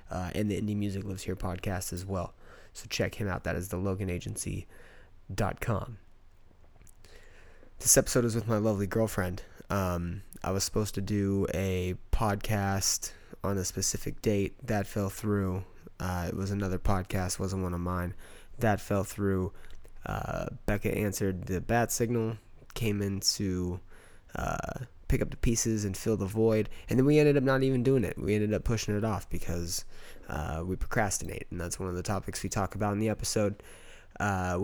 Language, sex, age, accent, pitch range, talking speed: English, male, 20-39, American, 95-110 Hz, 175 wpm